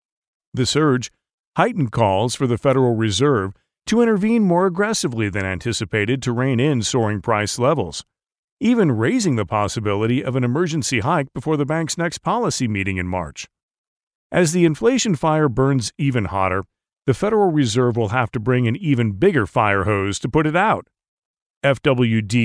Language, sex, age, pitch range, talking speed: English, male, 40-59, 110-155 Hz, 160 wpm